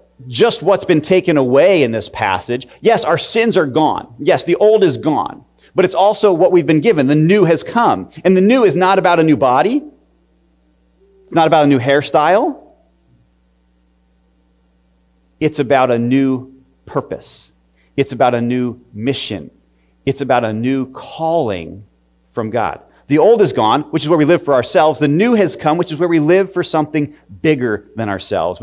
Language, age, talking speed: English, 30-49, 180 wpm